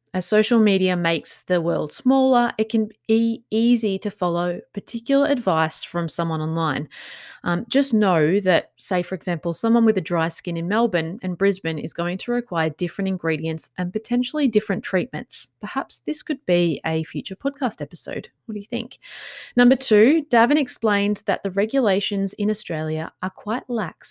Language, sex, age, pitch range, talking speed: English, female, 20-39, 170-230 Hz, 170 wpm